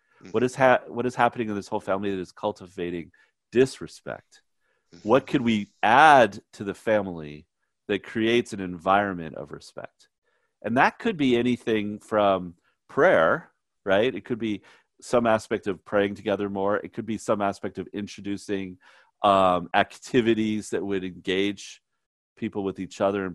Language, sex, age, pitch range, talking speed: English, male, 40-59, 95-110 Hz, 155 wpm